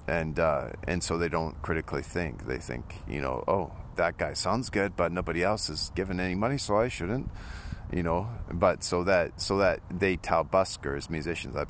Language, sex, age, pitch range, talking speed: English, male, 40-59, 70-95 Hz, 200 wpm